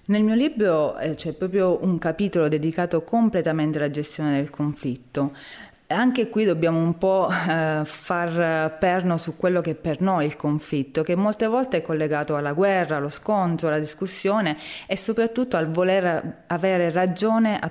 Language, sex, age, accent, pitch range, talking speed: Italian, female, 30-49, native, 155-210 Hz, 165 wpm